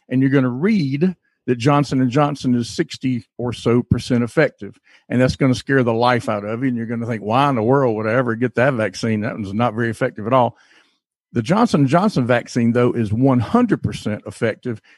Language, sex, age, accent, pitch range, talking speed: English, male, 50-69, American, 115-135 Hz, 220 wpm